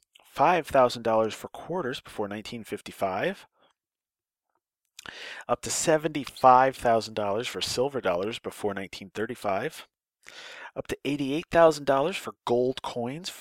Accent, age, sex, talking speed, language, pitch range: American, 30-49, male, 75 wpm, English, 100-135 Hz